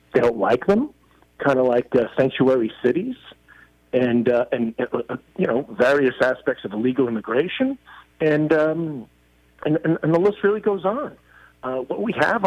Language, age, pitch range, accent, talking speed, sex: English, 50-69, 120-180 Hz, American, 165 wpm, male